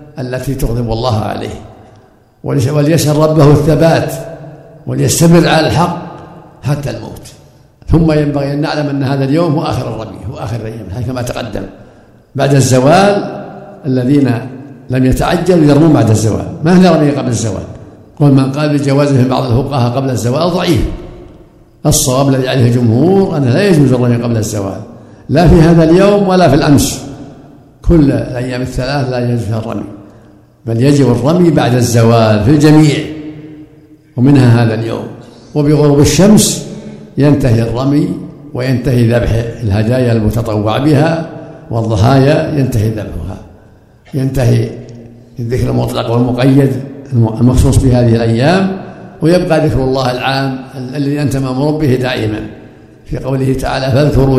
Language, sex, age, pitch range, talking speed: Arabic, male, 60-79, 120-155 Hz, 130 wpm